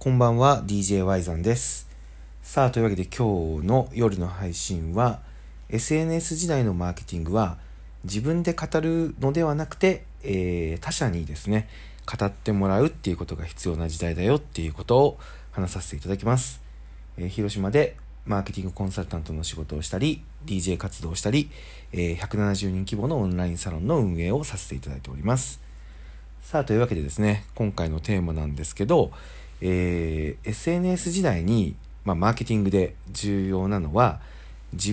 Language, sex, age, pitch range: Japanese, male, 40-59, 80-125 Hz